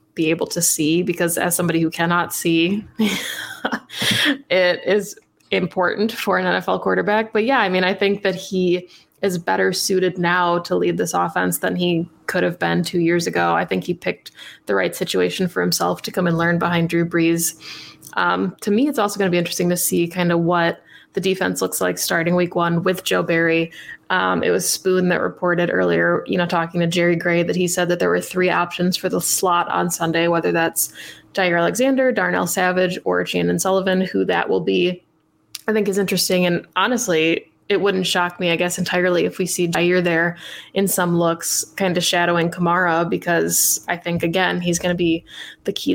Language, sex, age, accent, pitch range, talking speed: English, female, 20-39, American, 165-185 Hz, 200 wpm